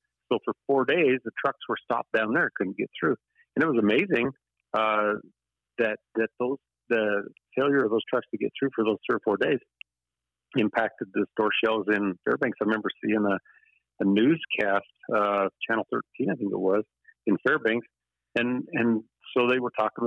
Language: English